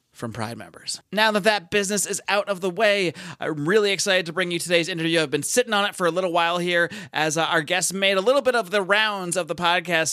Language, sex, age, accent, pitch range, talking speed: English, male, 30-49, American, 150-185 Hz, 260 wpm